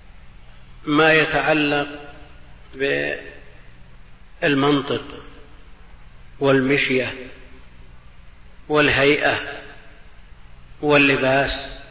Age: 50-69